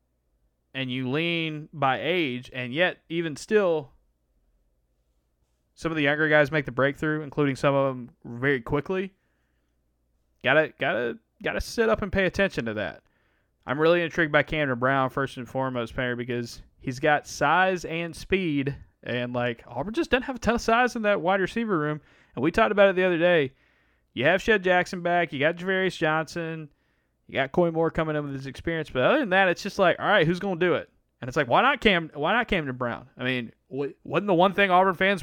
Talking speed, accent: 210 wpm, American